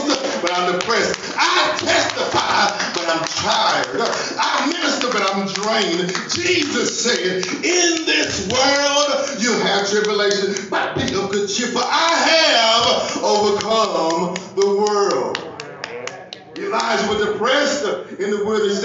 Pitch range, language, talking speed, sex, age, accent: 205-285 Hz, English, 120 wpm, male, 40-59, American